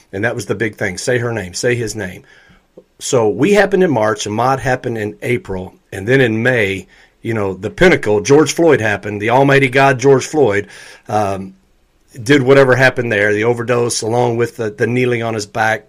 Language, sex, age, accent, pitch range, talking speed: English, male, 40-59, American, 110-135 Hz, 195 wpm